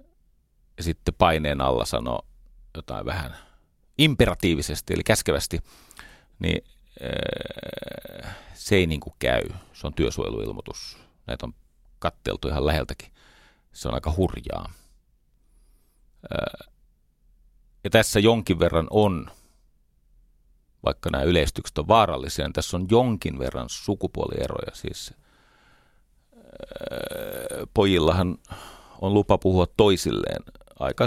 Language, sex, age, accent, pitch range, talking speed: Finnish, male, 40-59, native, 75-105 Hz, 95 wpm